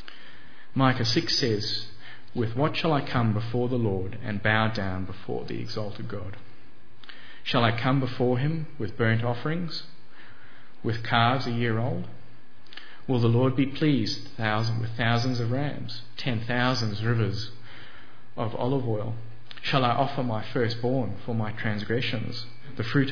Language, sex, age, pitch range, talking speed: English, male, 40-59, 110-125 Hz, 145 wpm